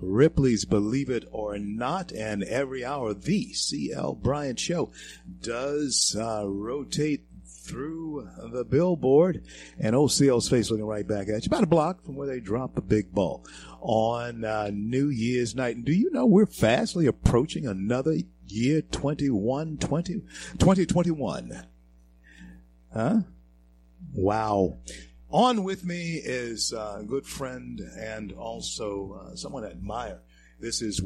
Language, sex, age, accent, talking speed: English, male, 50-69, American, 140 wpm